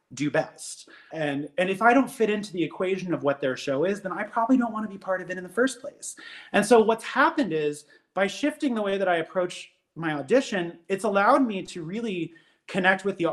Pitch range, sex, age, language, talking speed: 160-200 Hz, male, 30-49, English, 235 wpm